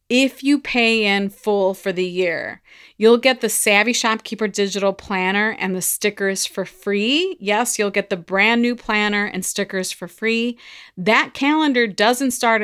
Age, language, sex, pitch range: 30-49, English, female, 185-235 Hz